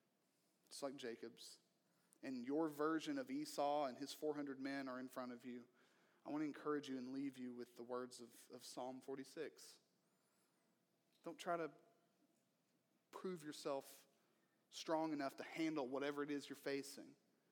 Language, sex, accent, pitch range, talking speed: English, male, American, 130-155 Hz, 160 wpm